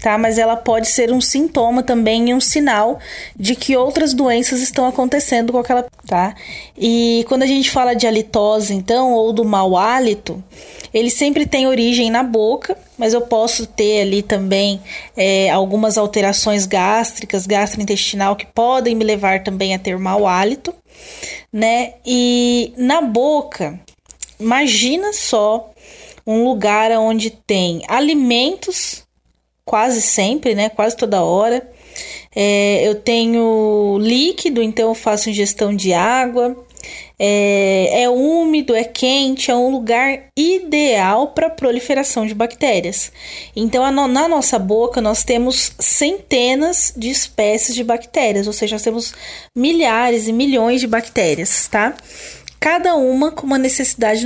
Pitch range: 215-260 Hz